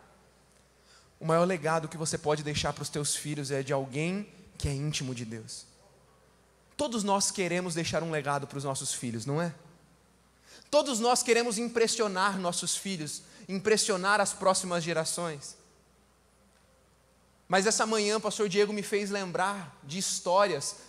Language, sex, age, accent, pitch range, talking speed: Portuguese, male, 20-39, Brazilian, 160-235 Hz, 150 wpm